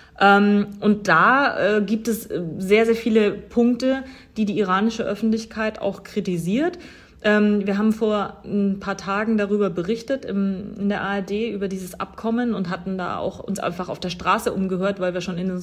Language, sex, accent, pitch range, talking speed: German, female, German, 185-215 Hz, 165 wpm